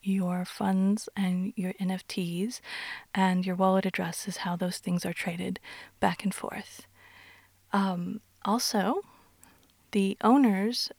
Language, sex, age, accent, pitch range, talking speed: English, female, 30-49, American, 185-220 Hz, 120 wpm